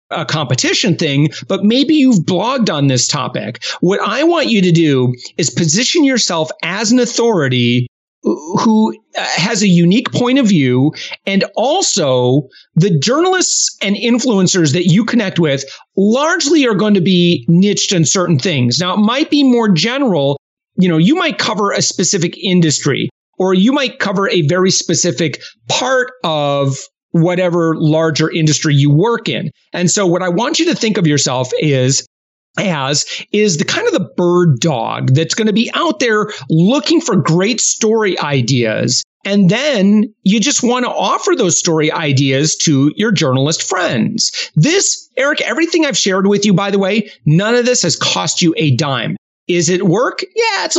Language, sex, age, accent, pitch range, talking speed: English, male, 40-59, American, 160-235 Hz, 170 wpm